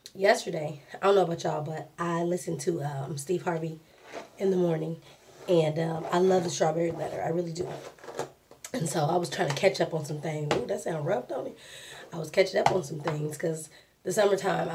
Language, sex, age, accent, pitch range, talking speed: English, female, 20-39, American, 165-190 Hz, 215 wpm